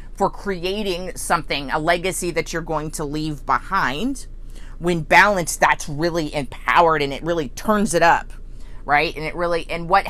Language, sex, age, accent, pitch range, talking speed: English, female, 30-49, American, 165-230 Hz, 165 wpm